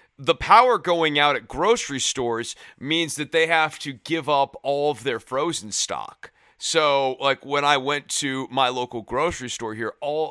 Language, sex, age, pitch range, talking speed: English, male, 30-49, 120-155 Hz, 180 wpm